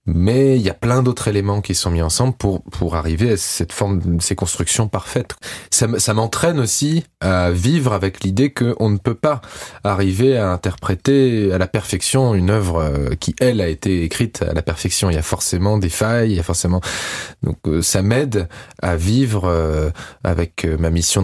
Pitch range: 85-110 Hz